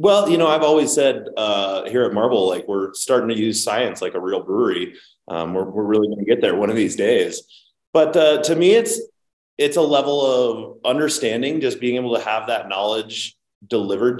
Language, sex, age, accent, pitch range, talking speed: English, male, 30-49, American, 100-130 Hz, 210 wpm